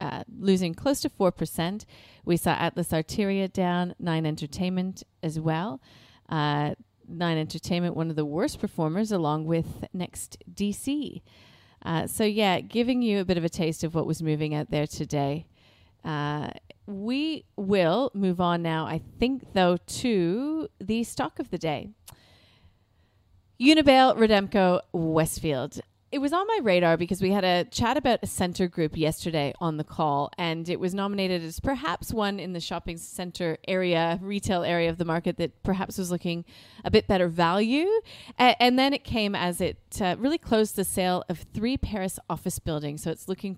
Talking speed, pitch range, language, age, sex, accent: 170 wpm, 160-200 Hz, English, 30-49, female, American